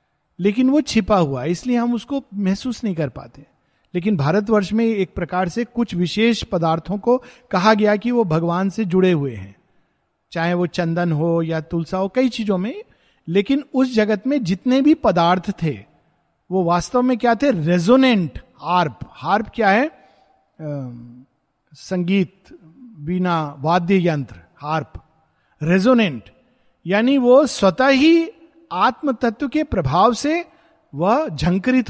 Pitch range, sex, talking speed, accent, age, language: 170-235 Hz, male, 140 wpm, native, 50-69, Hindi